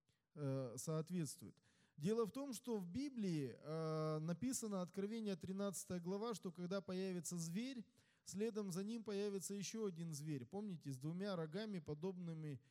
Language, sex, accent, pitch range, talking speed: Russian, male, native, 165-225 Hz, 125 wpm